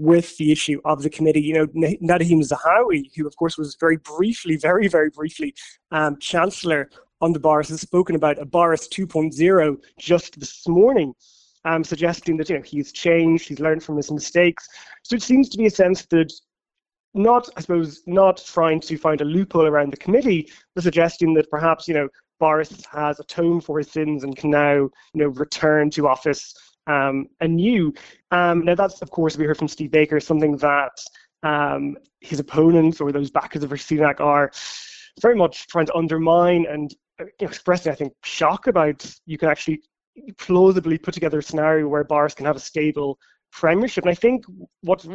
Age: 20-39